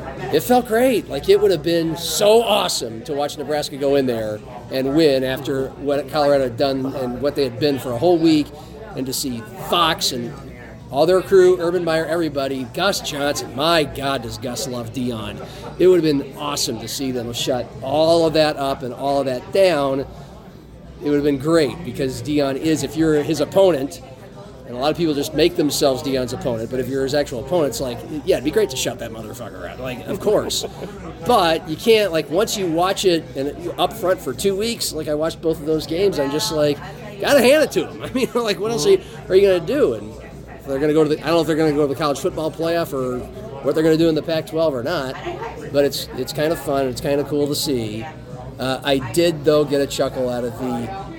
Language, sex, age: English, male, 30-49